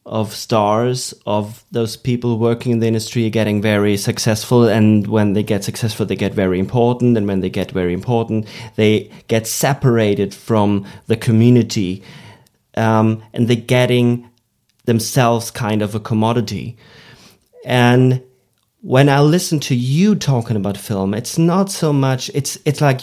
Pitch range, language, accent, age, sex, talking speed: 110-130 Hz, German, German, 30-49, male, 150 wpm